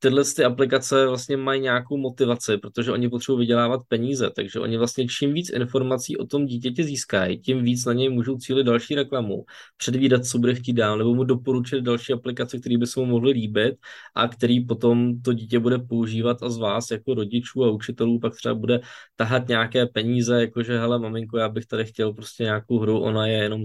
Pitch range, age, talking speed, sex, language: 110-125 Hz, 20-39, 200 wpm, male, Czech